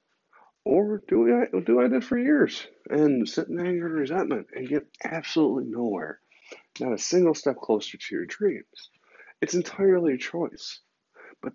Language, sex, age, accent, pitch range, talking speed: English, male, 40-59, American, 105-135 Hz, 160 wpm